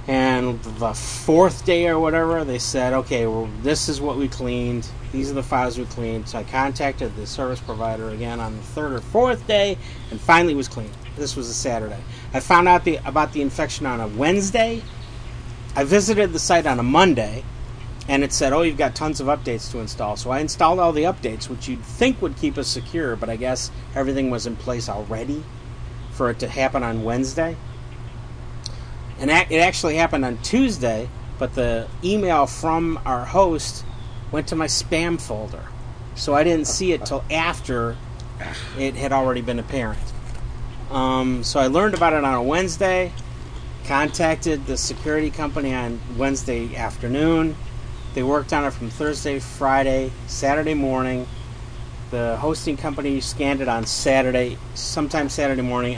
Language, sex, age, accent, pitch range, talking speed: English, male, 30-49, American, 120-150 Hz, 175 wpm